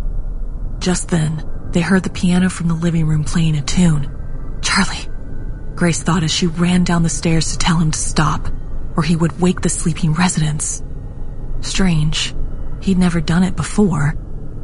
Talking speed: 165 wpm